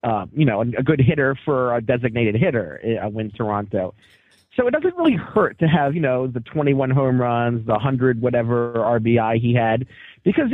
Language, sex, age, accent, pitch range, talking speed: English, male, 30-49, American, 125-205 Hz, 190 wpm